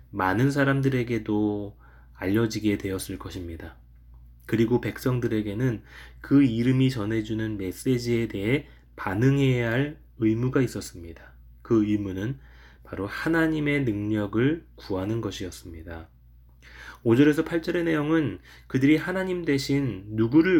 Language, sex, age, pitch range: Korean, male, 20-39, 95-130 Hz